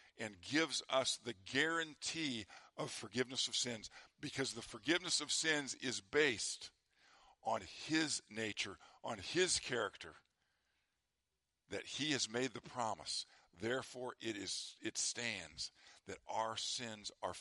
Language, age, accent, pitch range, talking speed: English, 50-69, American, 105-135 Hz, 130 wpm